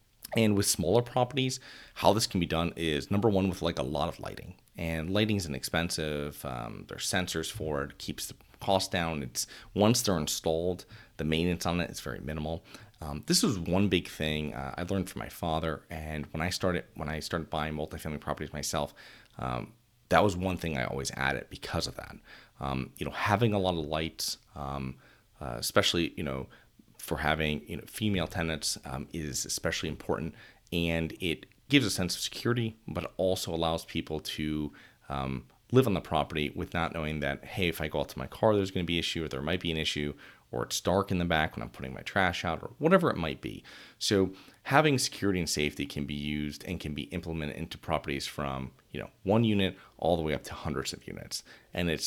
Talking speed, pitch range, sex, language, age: 210 wpm, 75-95 Hz, male, English, 30-49